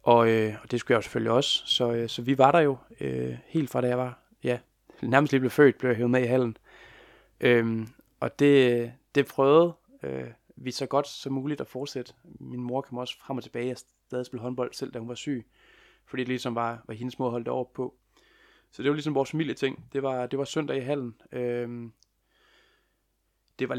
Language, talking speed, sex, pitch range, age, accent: Danish, 225 wpm, male, 120-135 Hz, 20-39, native